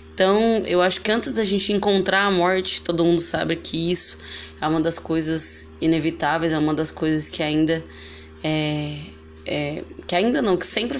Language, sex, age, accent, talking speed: Portuguese, female, 10-29, Brazilian, 180 wpm